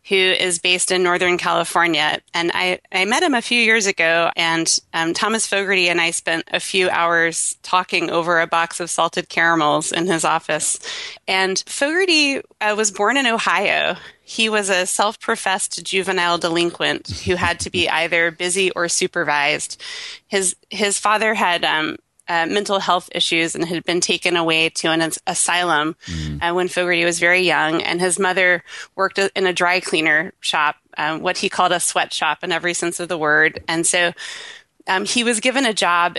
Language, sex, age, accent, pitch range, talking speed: English, female, 30-49, American, 170-195 Hz, 180 wpm